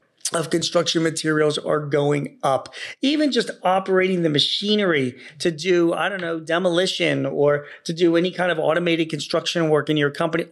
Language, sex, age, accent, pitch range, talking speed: English, male, 40-59, American, 145-185 Hz, 165 wpm